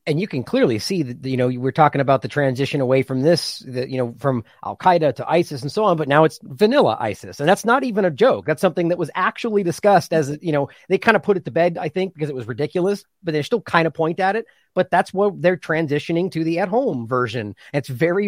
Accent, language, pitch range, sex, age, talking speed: American, English, 140-180 Hz, male, 30-49, 260 wpm